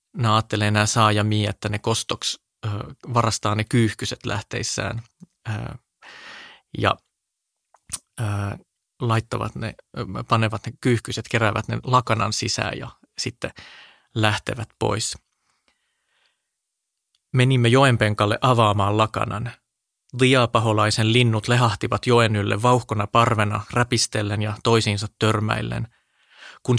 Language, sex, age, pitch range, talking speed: Finnish, male, 30-49, 105-120 Hz, 100 wpm